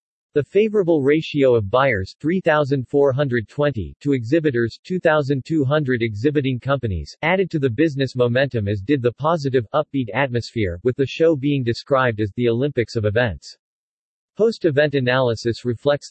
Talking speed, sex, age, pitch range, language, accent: 125 wpm, male, 40-59, 120-150 Hz, English, American